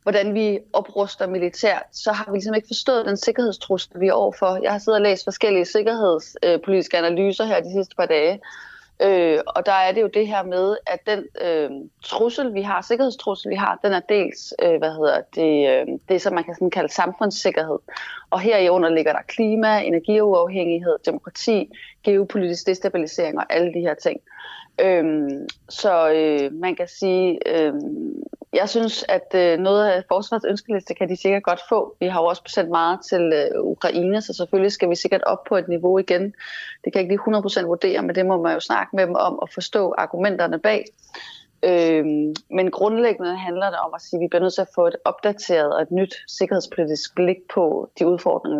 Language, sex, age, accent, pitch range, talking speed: Danish, female, 30-49, native, 175-215 Hz, 195 wpm